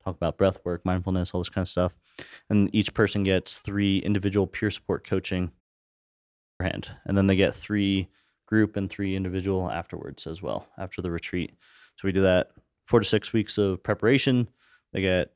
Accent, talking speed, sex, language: American, 185 wpm, male, English